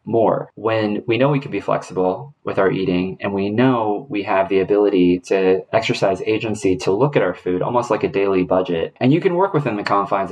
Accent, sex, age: American, male, 20-39